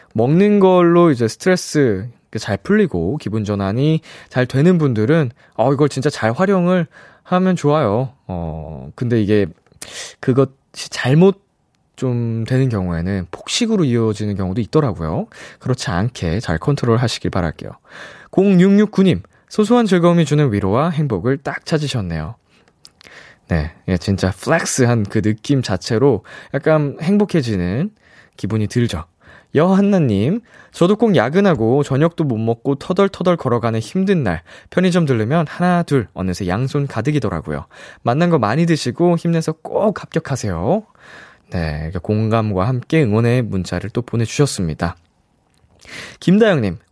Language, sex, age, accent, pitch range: Korean, male, 20-39, native, 110-170 Hz